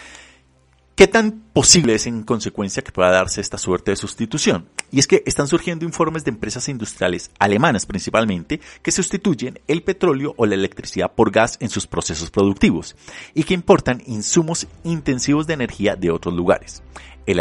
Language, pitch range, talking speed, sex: Spanish, 90-130 Hz, 165 wpm, male